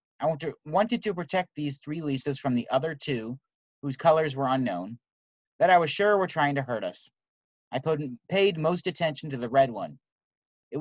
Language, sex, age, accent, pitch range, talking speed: English, male, 30-49, American, 125-160 Hz, 185 wpm